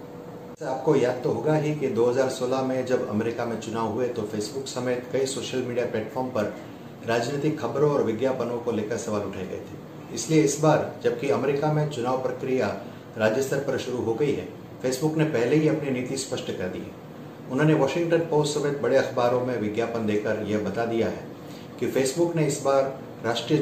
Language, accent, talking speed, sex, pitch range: Hindi, native, 90 wpm, male, 115-140 Hz